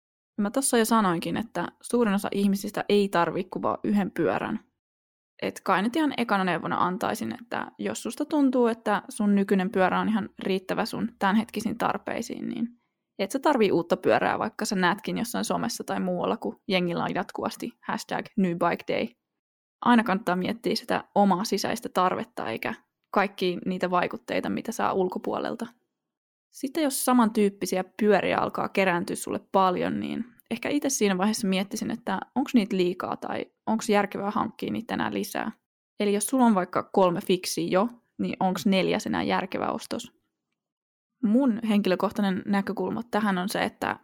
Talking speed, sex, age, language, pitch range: 150 wpm, female, 20-39, Finnish, 185-230 Hz